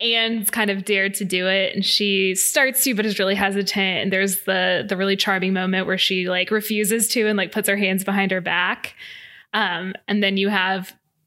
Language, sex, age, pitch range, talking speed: English, female, 20-39, 190-220 Hz, 215 wpm